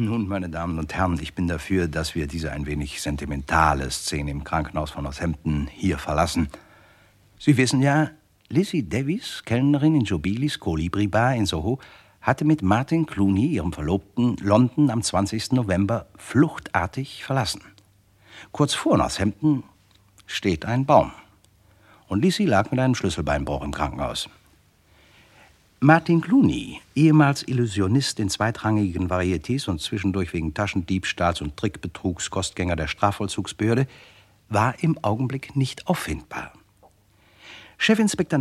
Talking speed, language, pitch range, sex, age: 125 wpm, German, 90-135 Hz, male, 60-79